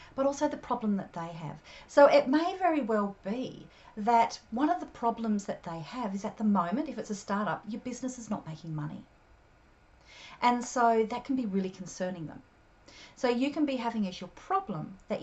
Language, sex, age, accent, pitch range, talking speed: English, female, 40-59, Australian, 190-255 Hz, 205 wpm